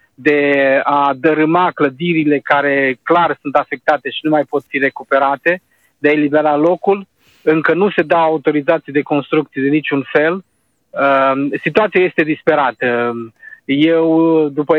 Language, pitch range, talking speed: Romanian, 145-170 Hz, 145 wpm